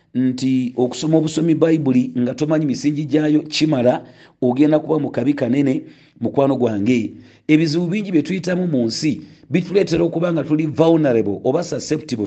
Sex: male